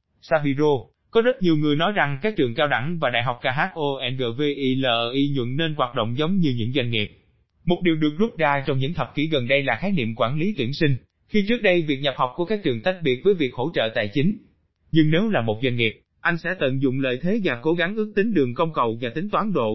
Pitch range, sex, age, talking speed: 125-175 Hz, male, 20-39, 250 wpm